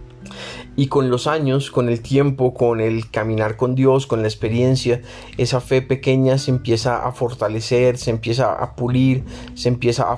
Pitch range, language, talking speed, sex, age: 115-130 Hz, Spanish, 170 wpm, male, 30-49